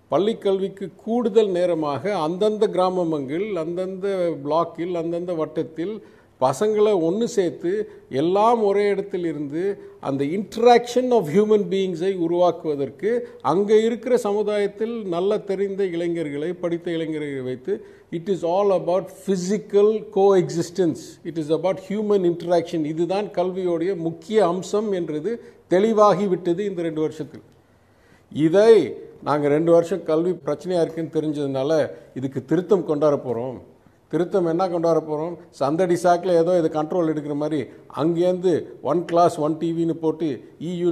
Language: English